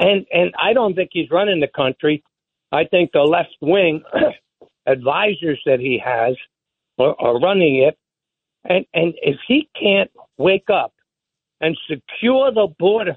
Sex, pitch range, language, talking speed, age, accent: male, 170-235 Hz, English, 150 wpm, 60-79, American